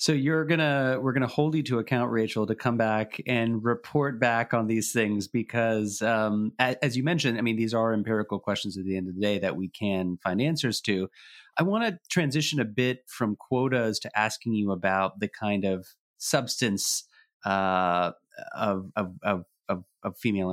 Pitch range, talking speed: 100-125 Hz, 185 wpm